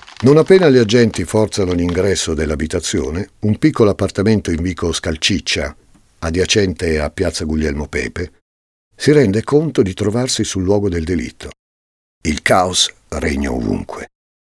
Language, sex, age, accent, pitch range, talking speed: Italian, male, 50-69, native, 80-110 Hz, 130 wpm